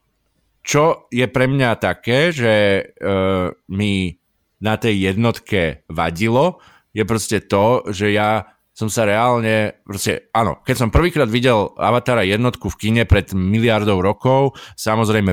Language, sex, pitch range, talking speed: Slovak, male, 95-120 Hz, 135 wpm